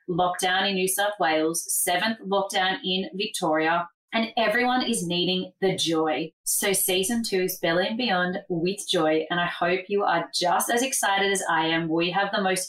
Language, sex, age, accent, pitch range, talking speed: English, female, 20-39, Australian, 170-200 Hz, 185 wpm